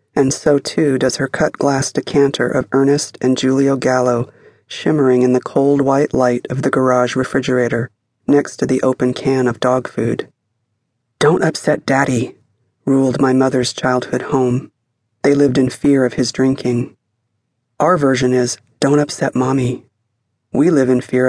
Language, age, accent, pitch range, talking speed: English, 40-59, American, 120-140 Hz, 155 wpm